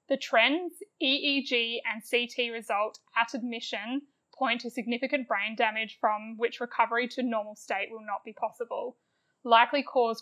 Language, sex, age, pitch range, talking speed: English, female, 10-29, 220-255 Hz, 145 wpm